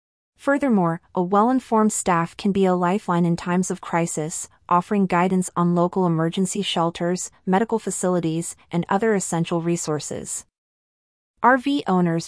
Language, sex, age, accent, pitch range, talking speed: English, female, 30-49, American, 170-205 Hz, 125 wpm